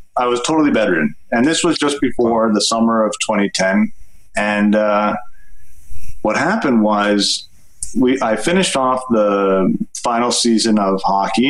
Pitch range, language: 105-135 Hz, English